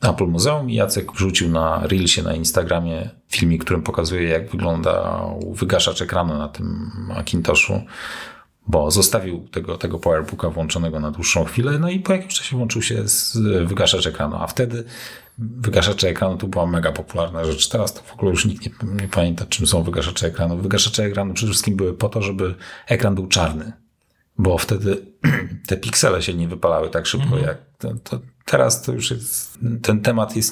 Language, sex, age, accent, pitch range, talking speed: Polish, male, 40-59, native, 85-110 Hz, 175 wpm